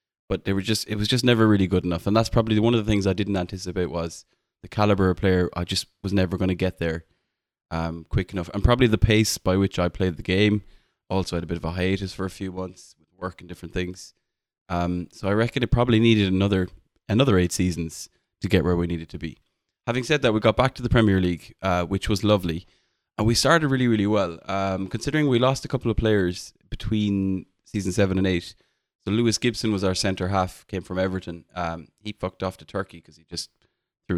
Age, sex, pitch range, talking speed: 20-39, male, 90-110 Hz, 235 wpm